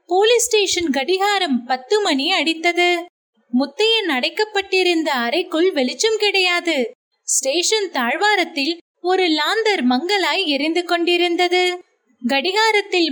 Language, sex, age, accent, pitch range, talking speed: Tamil, female, 20-39, native, 295-385 Hz, 85 wpm